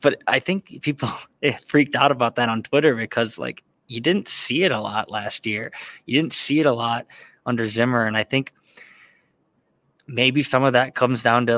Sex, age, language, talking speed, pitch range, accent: male, 20-39, English, 195 wpm, 110-130 Hz, American